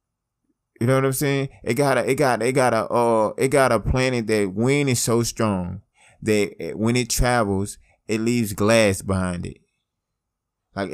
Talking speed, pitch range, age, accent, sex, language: 180 wpm, 95-115 Hz, 20-39, American, male, English